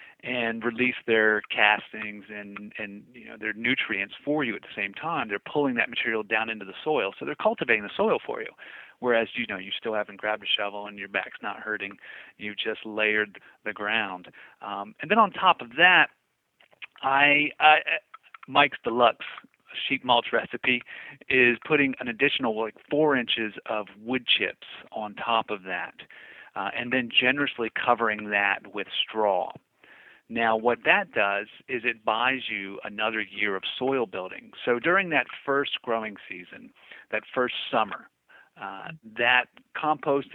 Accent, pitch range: American, 105-125 Hz